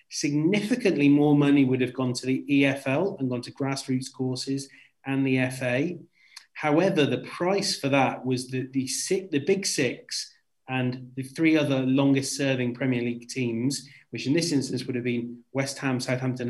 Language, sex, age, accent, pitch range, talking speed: English, male, 30-49, British, 125-145 Hz, 165 wpm